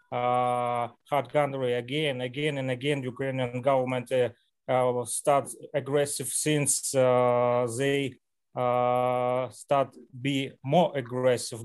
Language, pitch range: Russian, 125-140 Hz